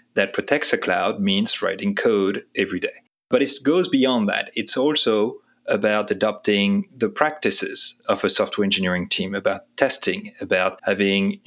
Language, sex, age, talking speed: English, male, 30-49, 150 wpm